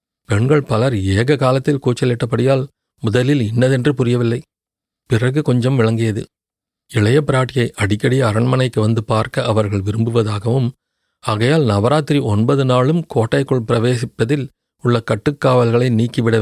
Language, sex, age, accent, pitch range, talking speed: Tamil, male, 40-59, native, 115-135 Hz, 100 wpm